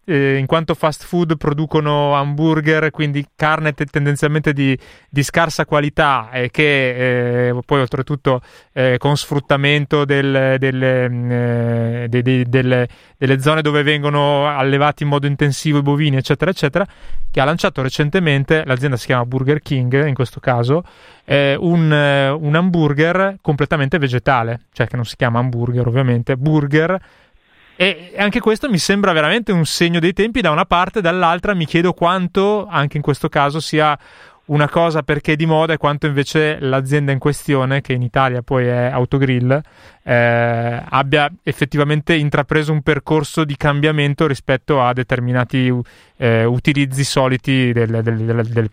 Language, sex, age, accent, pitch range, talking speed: Italian, male, 20-39, native, 130-155 Hz, 155 wpm